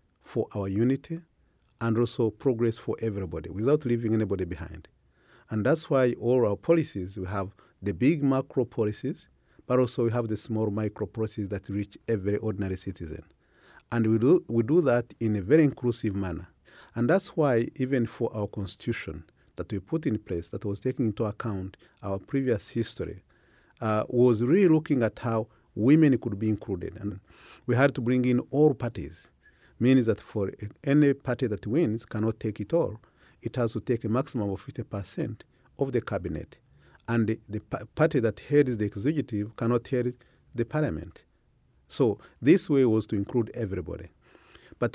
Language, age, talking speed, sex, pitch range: English, 40-59, 170 wpm, male, 105-130 Hz